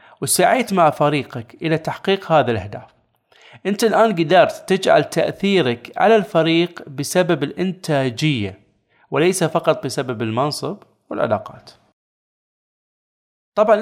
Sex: male